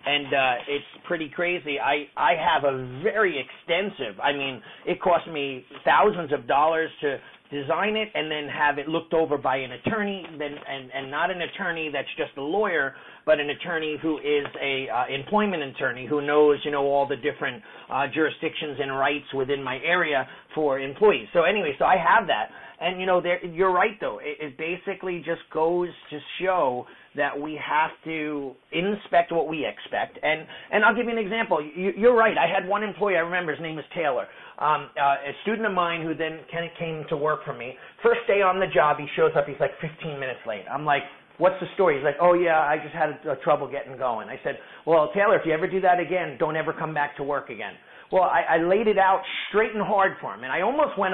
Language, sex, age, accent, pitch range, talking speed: English, male, 40-59, American, 145-185 Hz, 220 wpm